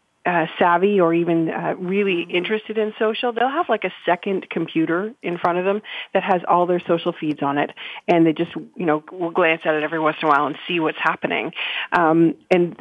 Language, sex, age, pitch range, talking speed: English, female, 30-49, 165-200 Hz, 220 wpm